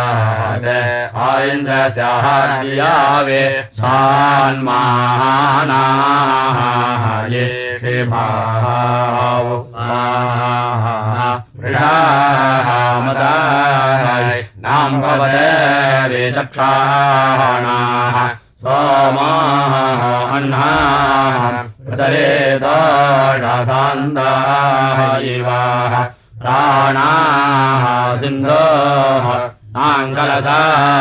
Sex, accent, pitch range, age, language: male, Indian, 120-135 Hz, 50-69, Russian